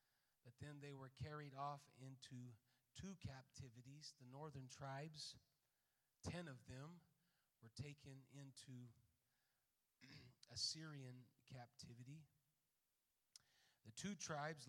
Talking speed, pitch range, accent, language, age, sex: 95 wpm, 130-155 Hz, American, English, 40-59, male